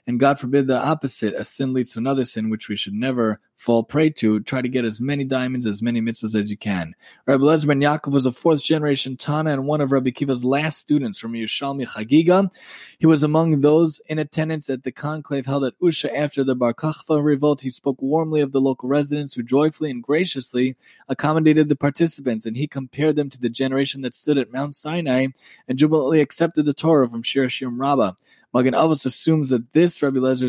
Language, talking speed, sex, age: English, 205 wpm, male, 20-39